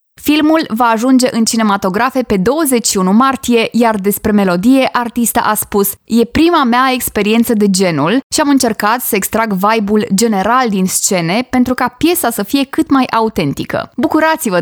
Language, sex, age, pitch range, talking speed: Romanian, female, 20-39, 205-255 Hz, 155 wpm